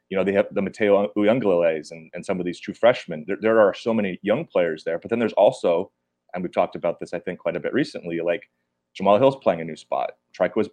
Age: 30-49